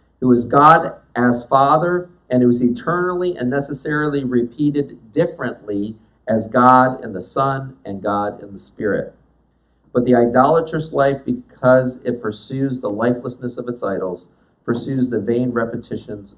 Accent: American